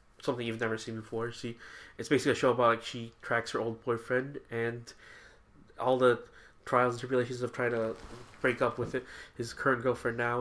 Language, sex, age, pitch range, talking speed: English, male, 20-39, 115-125 Hz, 195 wpm